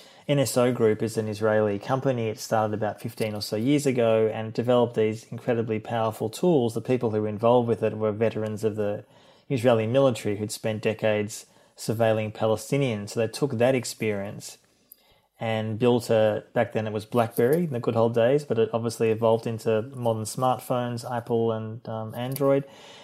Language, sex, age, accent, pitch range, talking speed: English, male, 20-39, Australian, 115-130 Hz, 175 wpm